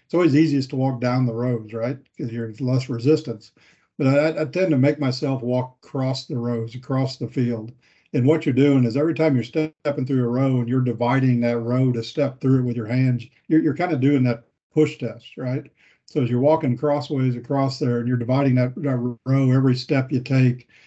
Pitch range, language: 120-140 Hz, English